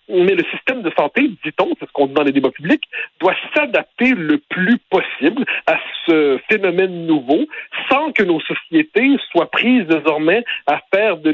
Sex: male